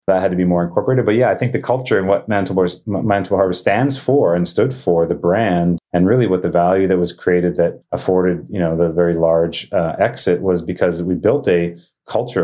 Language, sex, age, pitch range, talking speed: English, male, 30-49, 90-100 Hz, 220 wpm